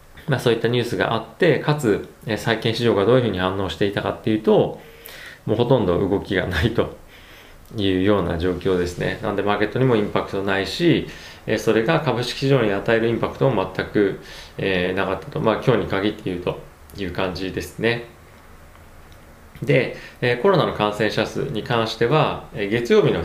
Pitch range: 90-115 Hz